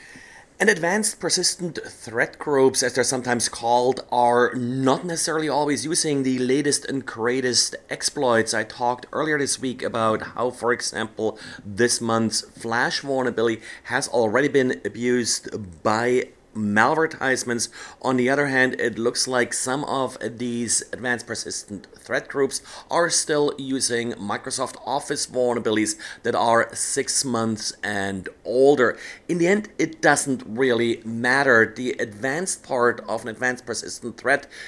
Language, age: English, 30-49